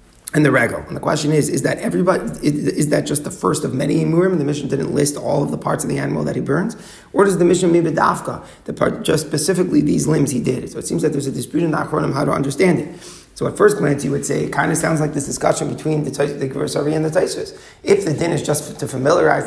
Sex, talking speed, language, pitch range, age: male, 285 wpm, English, 145-175 Hz, 30-49